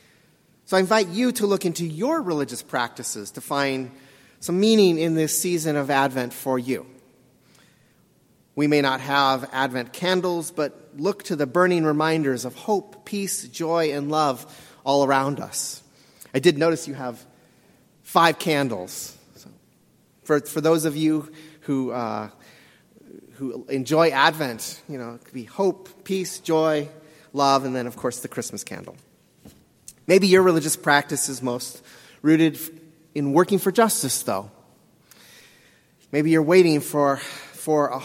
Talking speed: 150 wpm